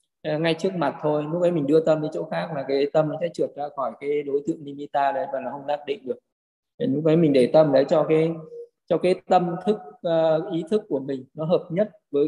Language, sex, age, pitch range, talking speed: Vietnamese, male, 20-39, 140-165 Hz, 255 wpm